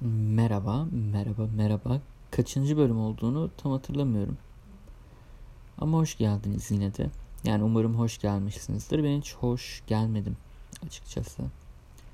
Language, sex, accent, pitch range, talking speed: Turkish, male, native, 105-120 Hz, 110 wpm